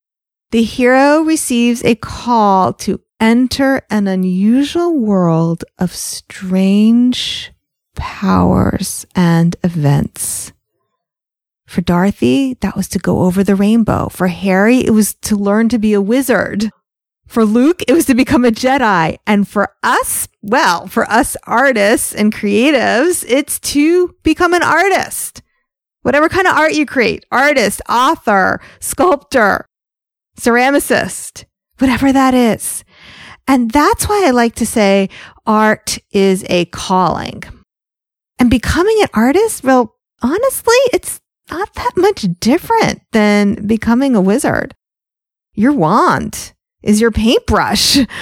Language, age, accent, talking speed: English, 30-49, American, 125 wpm